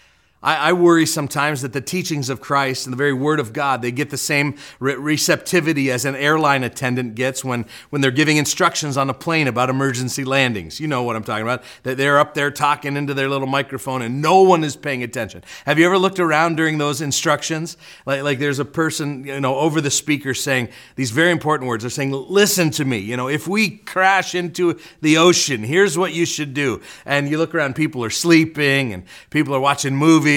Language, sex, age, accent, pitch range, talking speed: English, male, 40-59, American, 135-170 Hz, 215 wpm